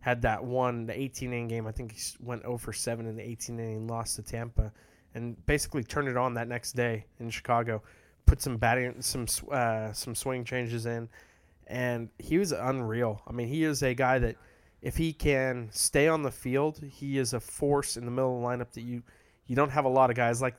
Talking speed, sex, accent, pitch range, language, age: 230 wpm, male, American, 115-130 Hz, English, 20-39